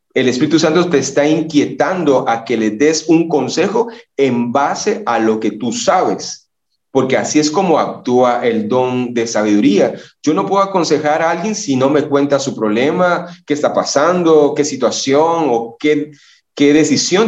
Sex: male